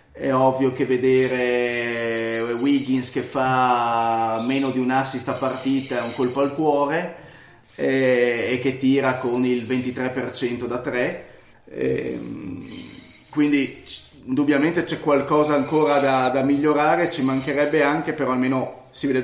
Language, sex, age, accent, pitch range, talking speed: Italian, male, 30-49, native, 125-135 Hz, 130 wpm